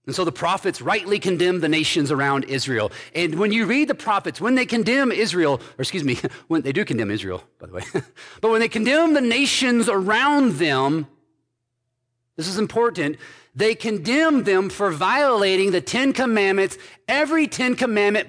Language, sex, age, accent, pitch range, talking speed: English, male, 50-69, American, 120-185 Hz, 175 wpm